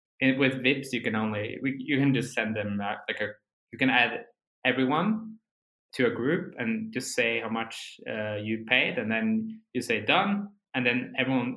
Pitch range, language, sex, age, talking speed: 110-140 Hz, English, male, 20-39, 180 wpm